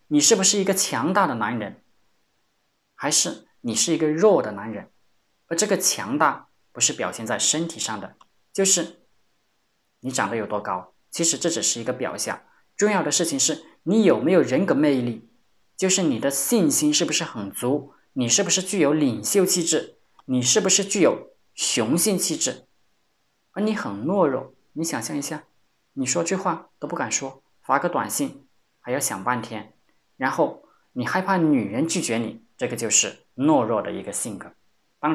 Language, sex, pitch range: Chinese, male, 125-185 Hz